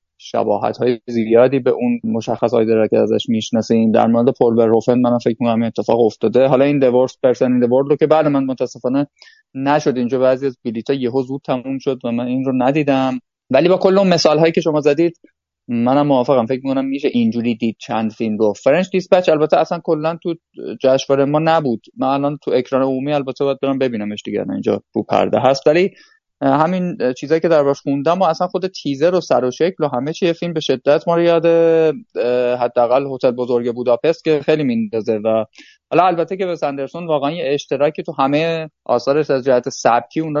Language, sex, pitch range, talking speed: Persian, male, 120-160 Hz, 200 wpm